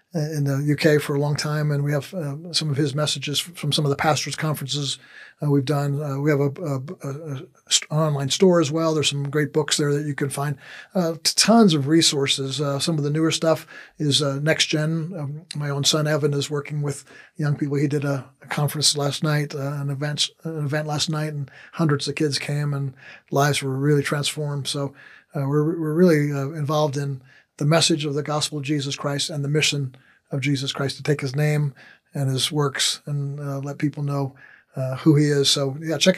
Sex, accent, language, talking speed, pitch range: male, American, English, 225 wpm, 140-160 Hz